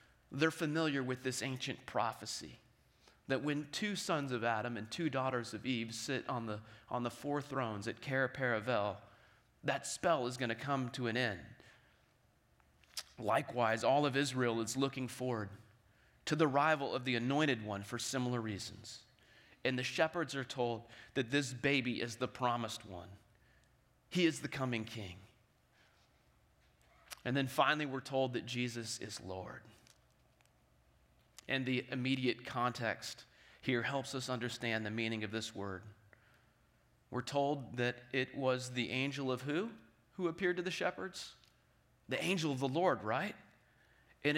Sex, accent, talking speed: male, American, 150 wpm